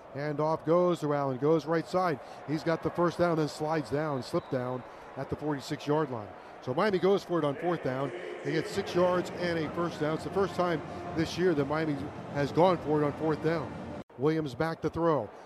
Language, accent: English, American